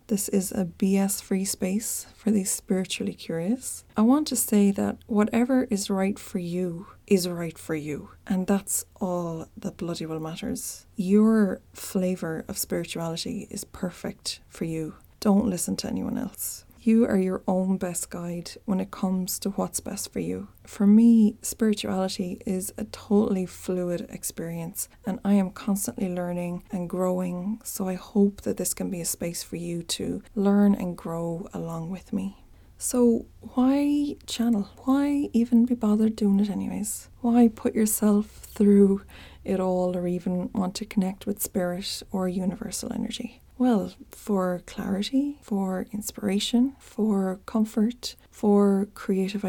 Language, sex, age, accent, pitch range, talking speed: English, female, 20-39, Irish, 190-220 Hz, 150 wpm